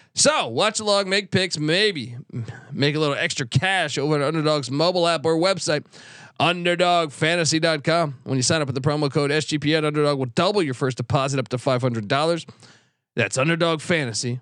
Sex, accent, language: male, American, English